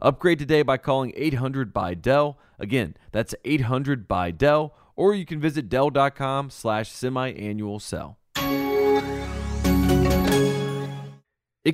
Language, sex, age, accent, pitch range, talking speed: English, male, 30-49, American, 110-150 Hz, 105 wpm